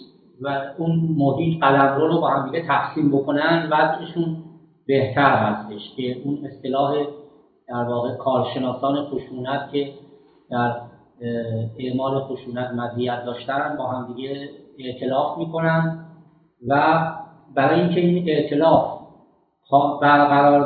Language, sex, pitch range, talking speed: Persian, male, 130-155 Hz, 105 wpm